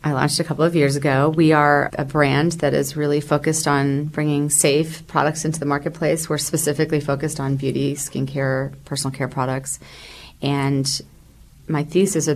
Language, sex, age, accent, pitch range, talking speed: English, female, 30-49, American, 135-150 Hz, 170 wpm